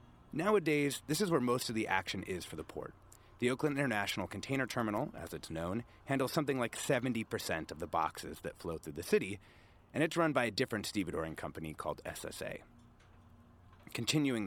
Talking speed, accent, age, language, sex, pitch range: 180 wpm, American, 30-49, English, male, 90-120 Hz